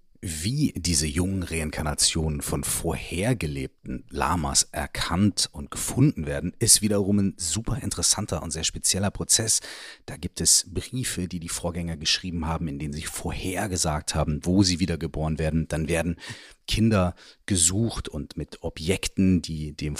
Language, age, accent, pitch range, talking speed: German, 40-59, German, 80-105 Hz, 140 wpm